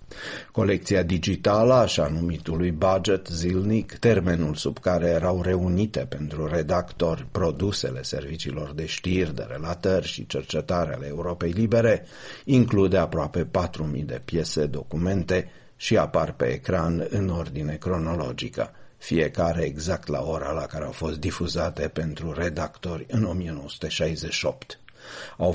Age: 50-69